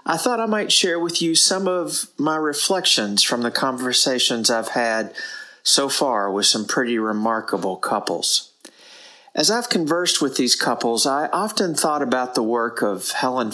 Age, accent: 40-59, American